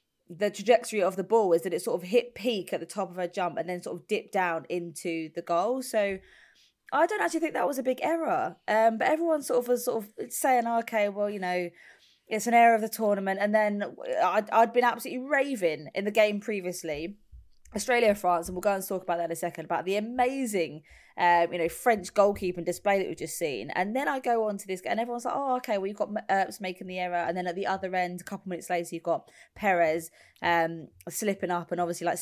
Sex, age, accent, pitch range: female, 20-39, British, 175-245 Hz